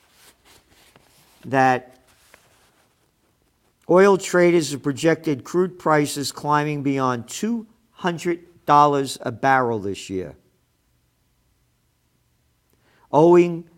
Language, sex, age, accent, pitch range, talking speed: English, male, 50-69, American, 120-155 Hz, 65 wpm